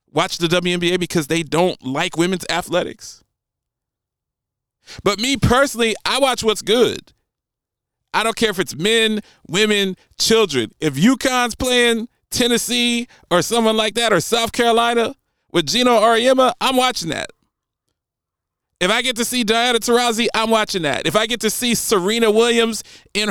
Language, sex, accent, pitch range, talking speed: English, male, American, 160-230 Hz, 150 wpm